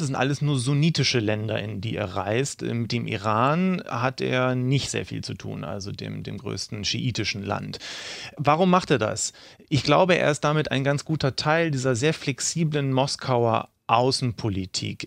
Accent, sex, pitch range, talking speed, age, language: German, male, 110-145 Hz, 175 wpm, 30-49, German